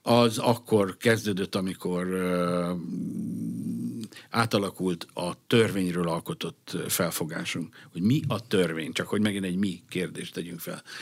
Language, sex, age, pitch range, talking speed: Hungarian, male, 60-79, 100-130 Hz, 115 wpm